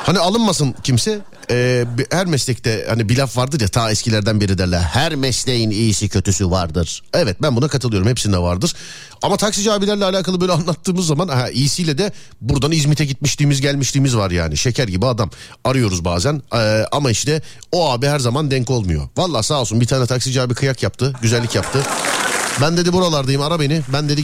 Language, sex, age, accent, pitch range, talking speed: Turkish, male, 40-59, native, 120-175 Hz, 180 wpm